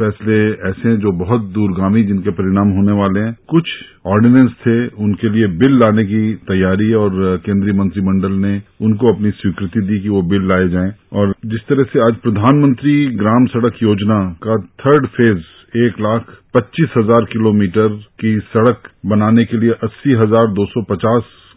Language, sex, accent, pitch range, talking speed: English, male, Indian, 100-120 Hz, 145 wpm